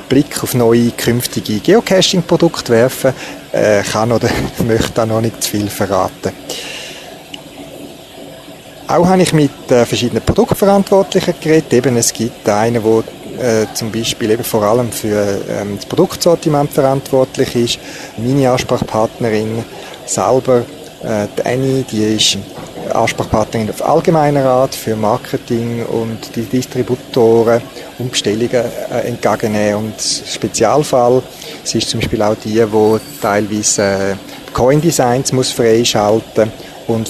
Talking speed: 125 wpm